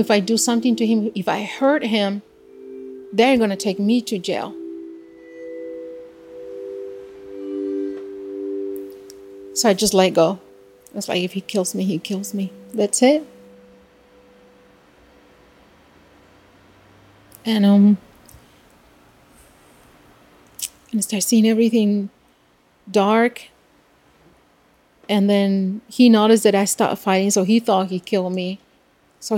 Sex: female